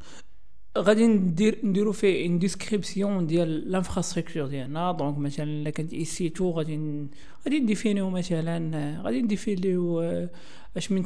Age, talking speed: 40-59, 125 wpm